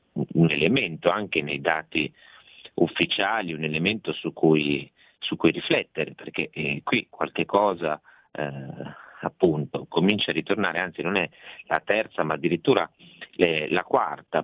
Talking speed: 135 wpm